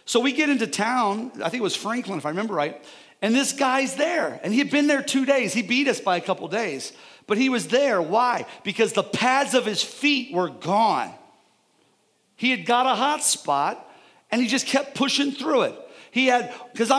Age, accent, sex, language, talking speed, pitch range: 40-59, American, male, English, 215 wpm, 195-265 Hz